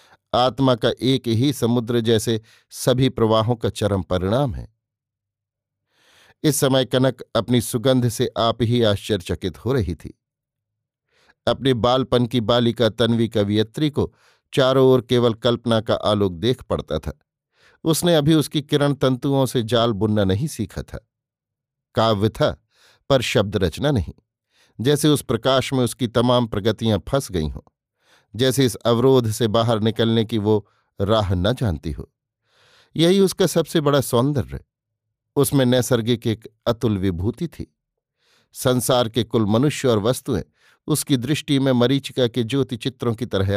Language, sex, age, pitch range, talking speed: Hindi, male, 50-69, 110-135 Hz, 145 wpm